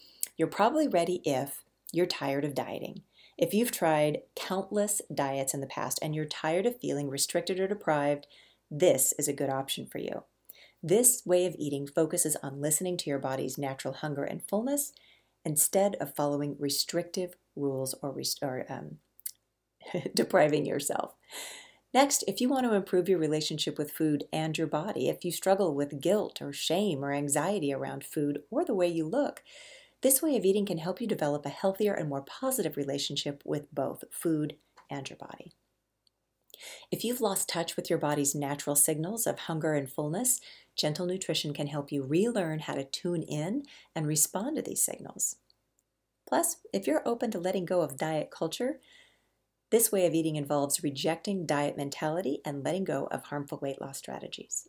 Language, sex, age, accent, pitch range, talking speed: English, female, 40-59, American, 145-195 Hz, 175 wpm